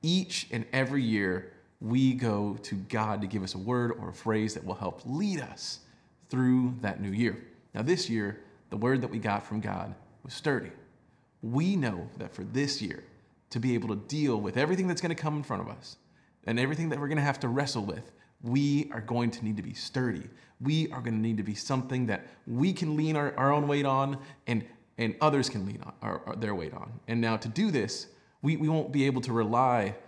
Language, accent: English, American